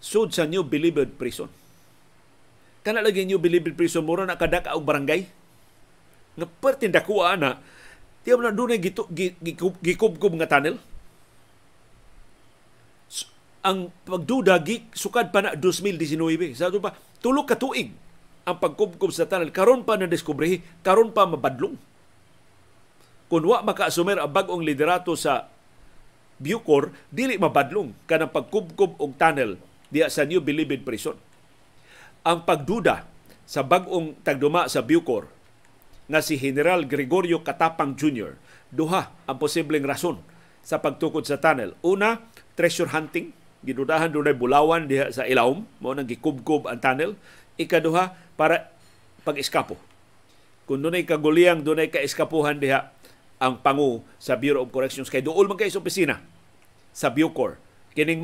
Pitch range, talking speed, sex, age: 145-190 Hz, 130 wpm, male, 50-69